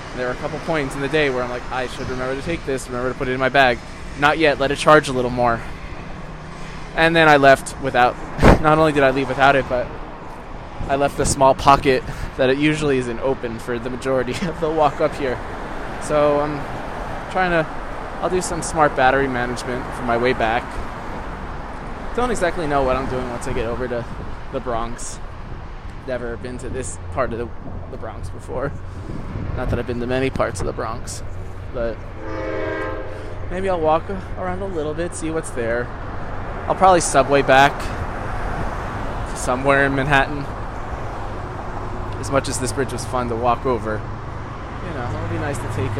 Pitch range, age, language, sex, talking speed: 100-135 Hz, 20-39, English, male, 190 wpm